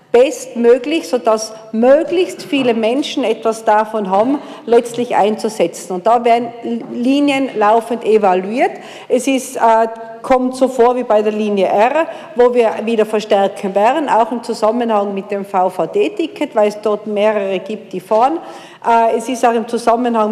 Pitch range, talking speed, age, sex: 215-255 Hz, 150 wpm, 50-69, female